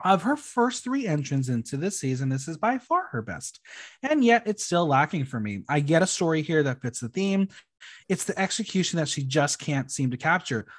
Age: 20-39